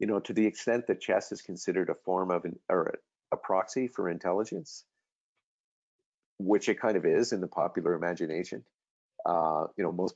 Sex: male